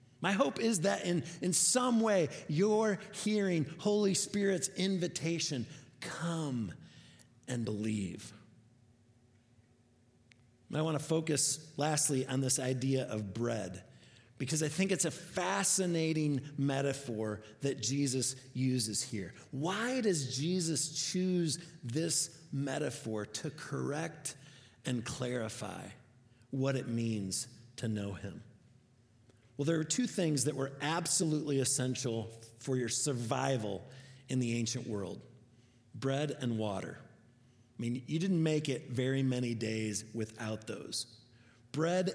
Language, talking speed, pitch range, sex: English, 120 wpm, 120-170 Hz, male